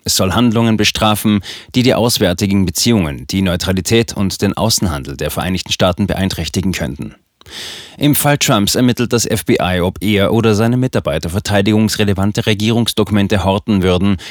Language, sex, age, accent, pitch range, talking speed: German, male, 30-49, German, 95-110 Hz, 140 wpm